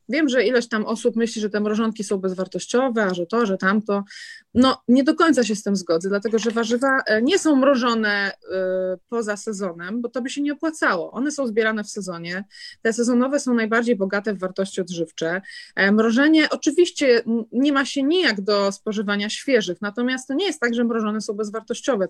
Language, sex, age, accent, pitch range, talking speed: Polish, female, 20-39, native, 195-245 Hz, 185 wpm